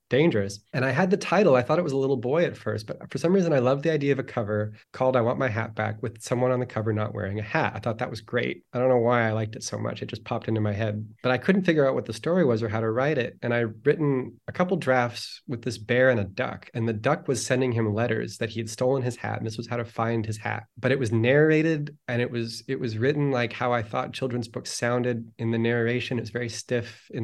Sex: male